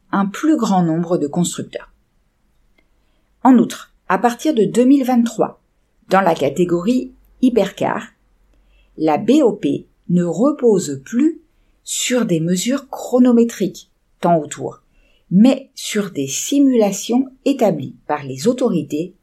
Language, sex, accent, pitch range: French, female, French, 155-240 Hz